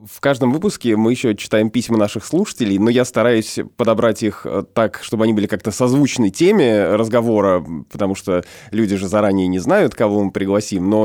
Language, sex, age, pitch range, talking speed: Russian, male, 20-39, 105-135 Hz, 180 wpm